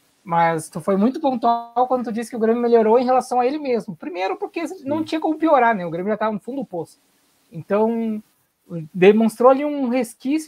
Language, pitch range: Portuguese, 190-260 Hz